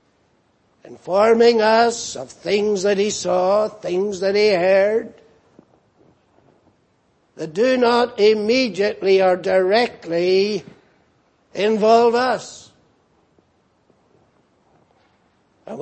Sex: male